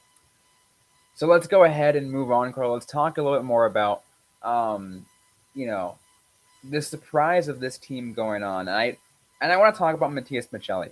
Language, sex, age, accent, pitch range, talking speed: English, male, 20-39, American, 110-160 Hz, 185 wpm